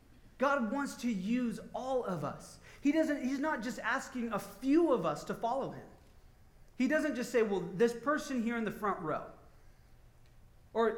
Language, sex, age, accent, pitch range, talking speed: English, male, 30-49, American, 175-255 Hz, 180 wpm